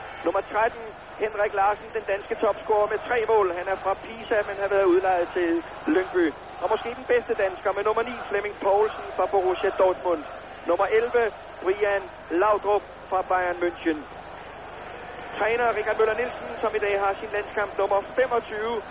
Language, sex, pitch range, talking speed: Danish, male, 195-230 Hz, 165 wpm